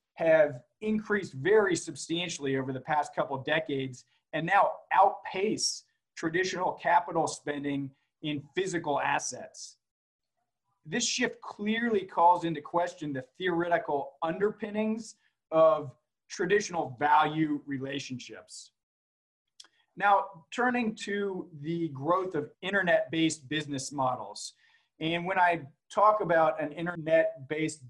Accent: American